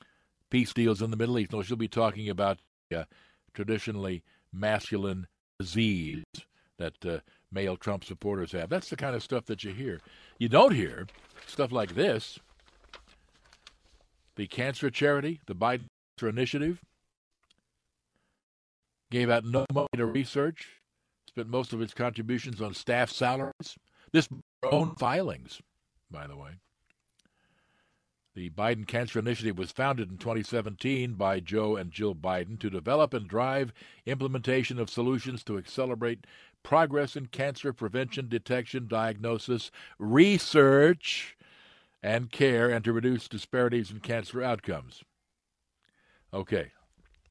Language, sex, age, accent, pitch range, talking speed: English, male, 60-79, American, 105-130 Hz, 125 wpm